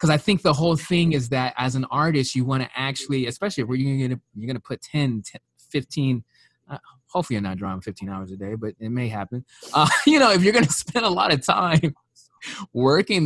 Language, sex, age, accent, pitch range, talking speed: English, male, 20-39, American, 110-140 Hz, 235 wpm